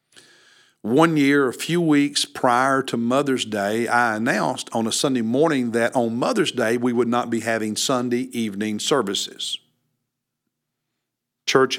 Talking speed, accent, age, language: 145 wpm, American, 50-69, English